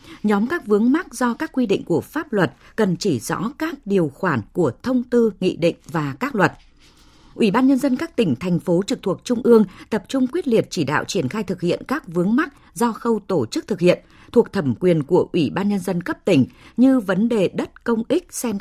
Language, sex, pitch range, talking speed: Vietnamese, female, 175-245 Hz, 235 wpm